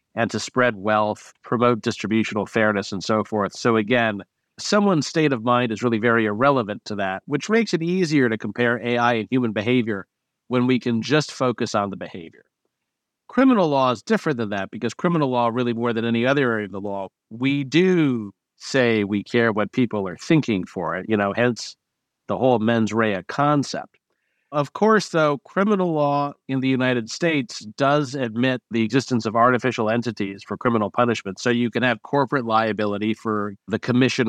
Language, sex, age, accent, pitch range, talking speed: English, male, 50-69, American, 110-135 Hz, 185 wpm